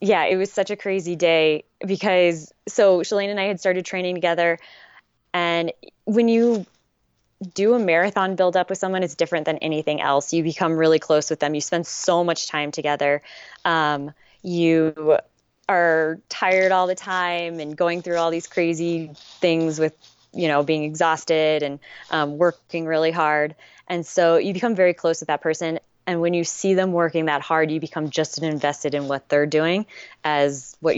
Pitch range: 150-175 Hz